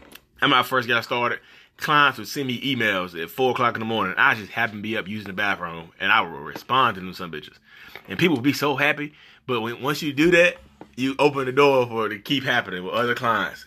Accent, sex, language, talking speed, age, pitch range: American, male, English, 250 wpm, 30-49, 105-135 Hz